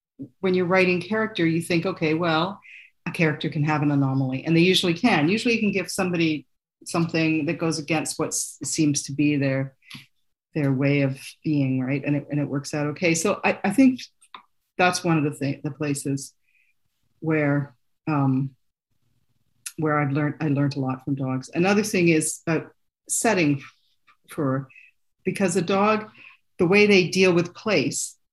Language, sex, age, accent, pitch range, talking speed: English, female, 50-69, American, 145-175 Hz, 175 wpm